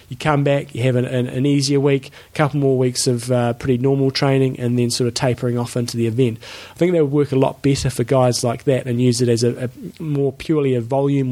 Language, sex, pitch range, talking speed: English, male, 125-145 Hz, 265 wpm